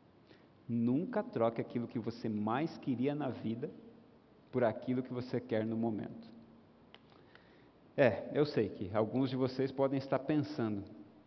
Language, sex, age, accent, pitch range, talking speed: Portuguese, male, 50-69, Brazilian, 125-210 Hz, 140 wpm